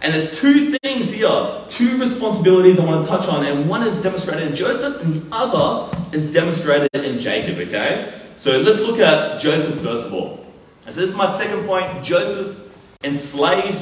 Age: 20-39